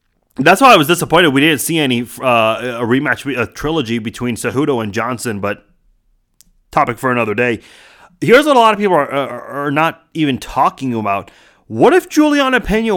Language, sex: English, male